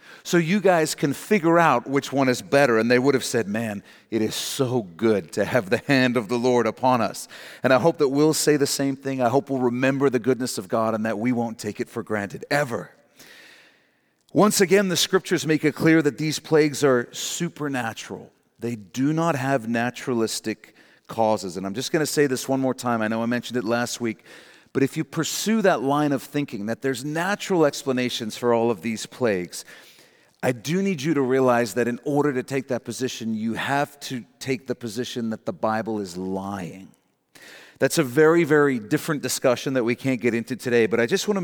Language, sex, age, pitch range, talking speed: English, male, 40-59, 120-150 Hz, 215 wpm